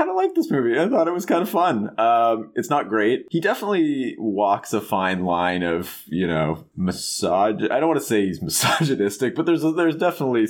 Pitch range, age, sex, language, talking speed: 85-120 Hz, 30-49, male, English, 215 wpm